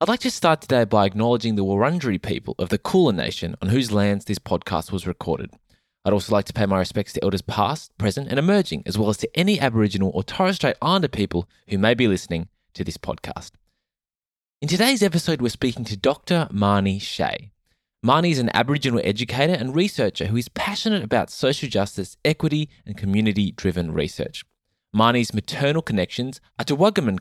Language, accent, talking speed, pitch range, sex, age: English, Australian, 185 wpm, 100-155 Hz, male, 20-39